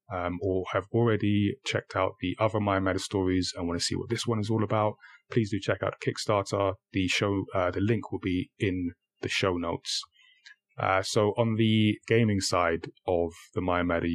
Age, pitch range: 20-39, 90-110 Hz